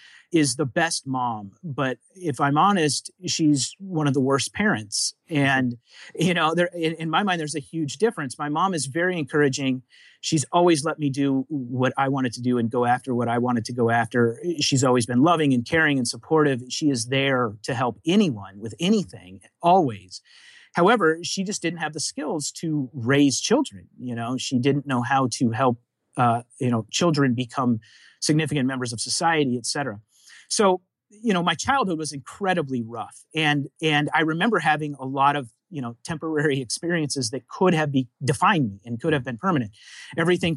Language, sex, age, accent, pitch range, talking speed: English, male, 30-49, American, 125-160 Hz, 190 wpm